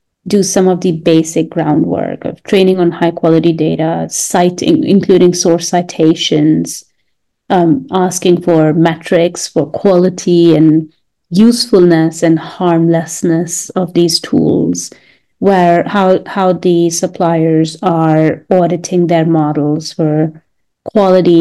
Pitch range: 165-185 Hz